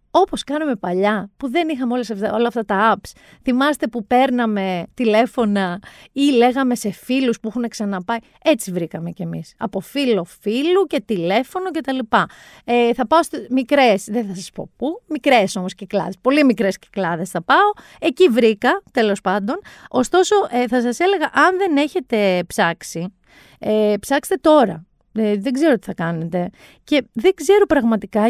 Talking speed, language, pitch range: 165 wpm, Greek, 195-285 Hz